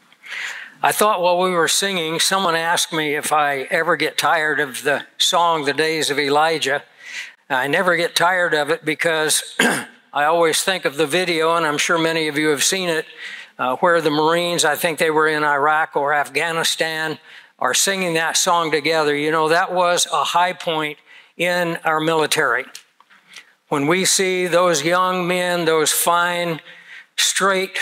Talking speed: 170 wpm